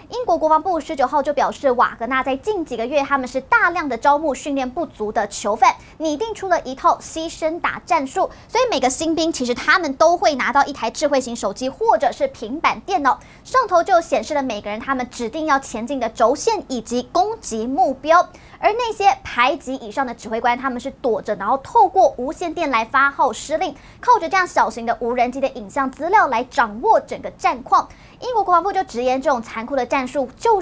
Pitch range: 250-340 Hz